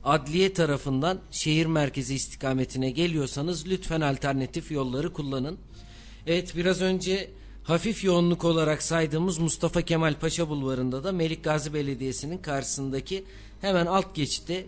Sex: male